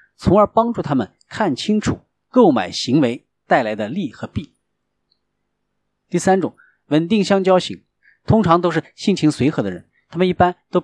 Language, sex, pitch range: Chinese, male, 145-205 Hz